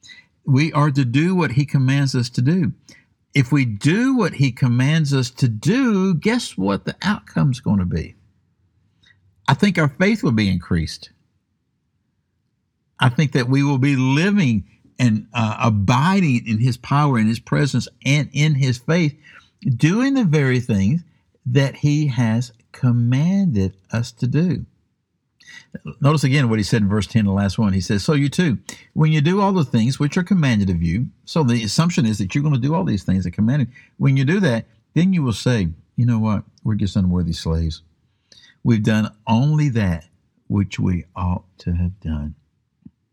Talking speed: 185 wpm